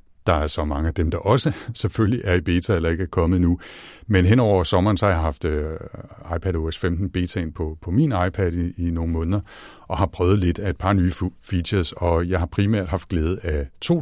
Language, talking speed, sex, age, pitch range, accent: Danish, 230 wpm, male, 60-79, 80-95 Hz, native